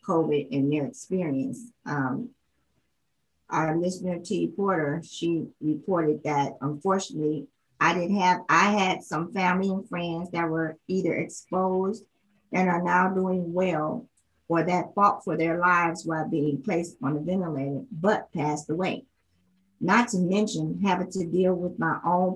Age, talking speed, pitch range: 50-69, 150 wpm, 150-185 Hz